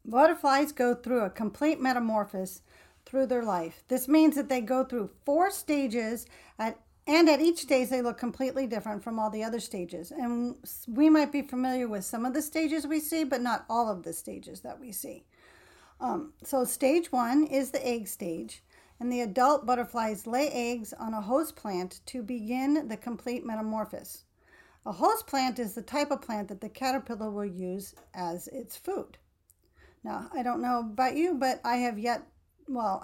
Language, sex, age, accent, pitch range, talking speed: English, female, 50-69, American, 220-275 Hz, 185 wpm